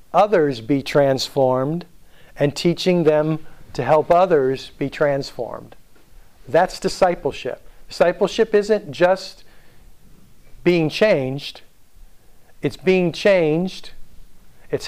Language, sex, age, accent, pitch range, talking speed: English, male, 50-69, American, 130-160 Hz, 90 wpm